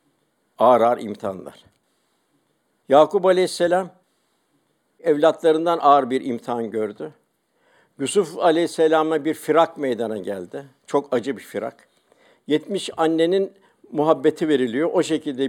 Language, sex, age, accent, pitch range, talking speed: Turkish, male, 60-79, native, 130-165 Hz, 100 wpm